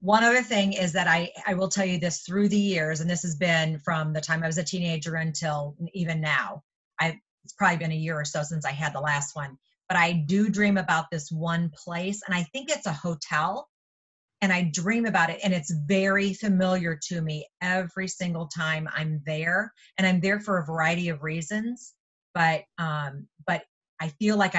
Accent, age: American, 30-49